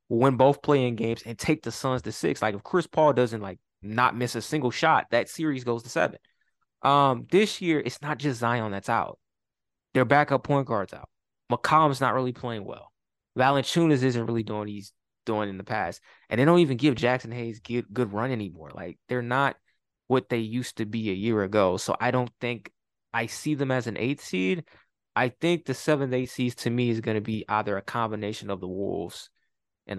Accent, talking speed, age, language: American, 210 wpm, 20-39, English